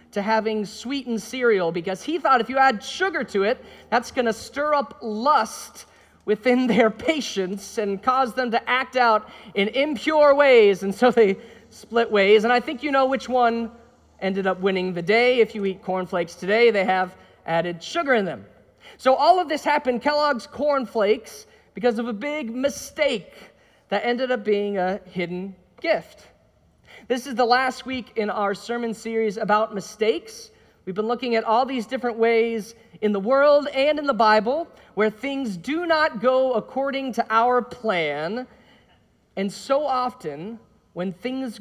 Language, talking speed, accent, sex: English, 170 wpm, American, male